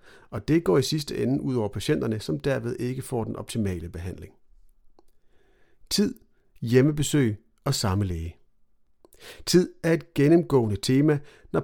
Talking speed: 140 wpm